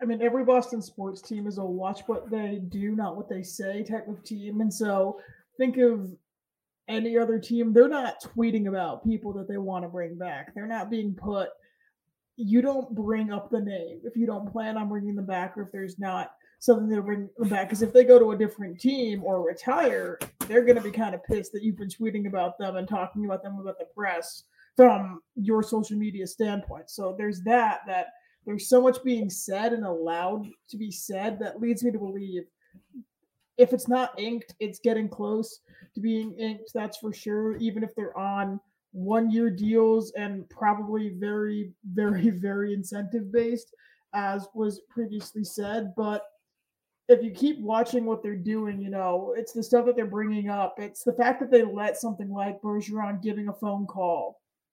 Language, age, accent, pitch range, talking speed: English, 20-39, American, 200-235 Hz, 195 wpm